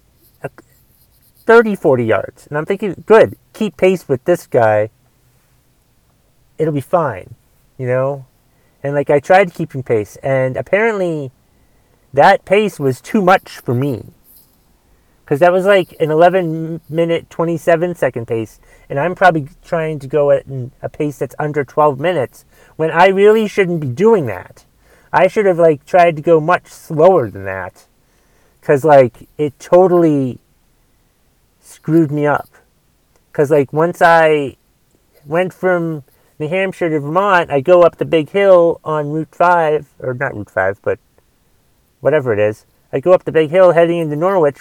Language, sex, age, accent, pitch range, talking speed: English, male, 30-49, American, 130-175 Hz, 155 wpm